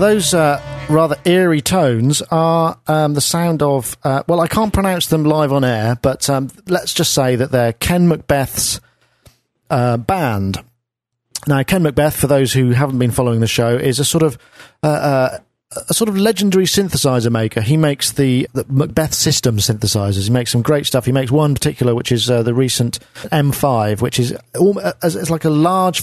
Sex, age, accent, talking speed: male, 40-59, British, 190 wpm